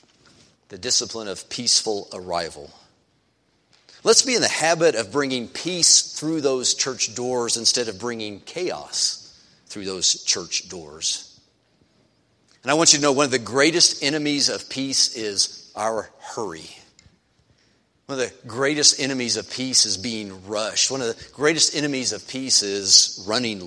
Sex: male